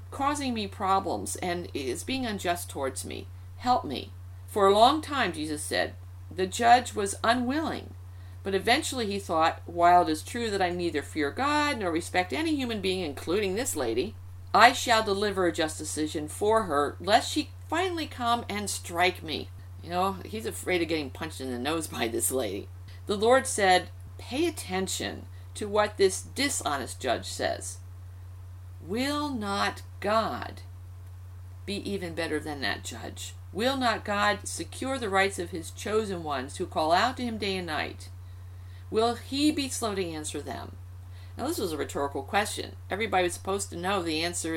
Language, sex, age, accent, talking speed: English, female, 50-69, American, 170 wpm